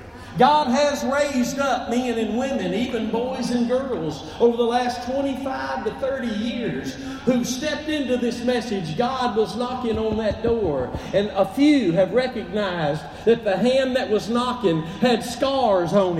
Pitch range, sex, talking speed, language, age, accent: 220-275 Hz, male, 160 wpm, English, 50-69, American